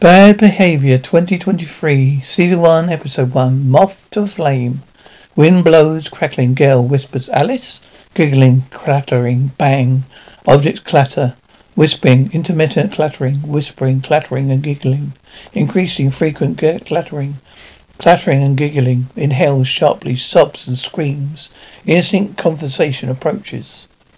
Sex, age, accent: male, 60-79, British